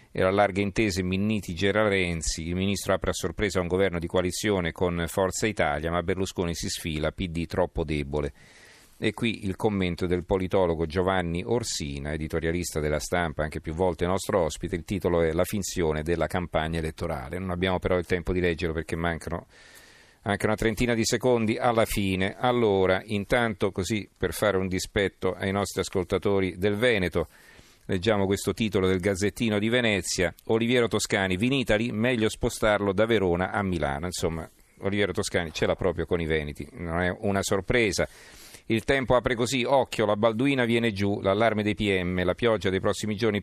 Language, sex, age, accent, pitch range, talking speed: Italian, male, 40-59, native, 85-110 Hz, 170 wpm